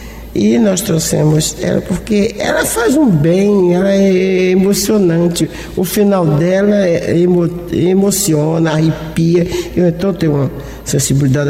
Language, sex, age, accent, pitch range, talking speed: Portuguese, male, 60-79, Brazilian, 155-205 Hz, 115 wpm